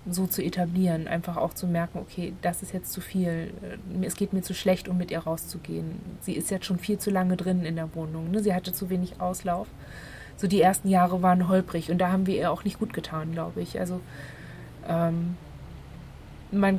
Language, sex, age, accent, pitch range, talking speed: German, female, 20-39, German, 175-195 Hz, 205 wpm